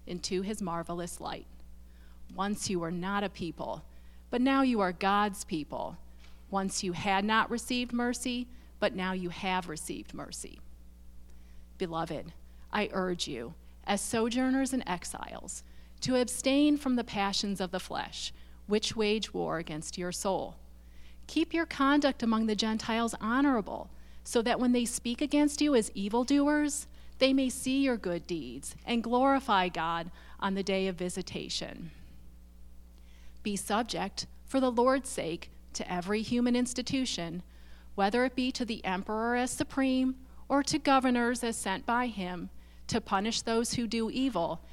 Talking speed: 150 wpm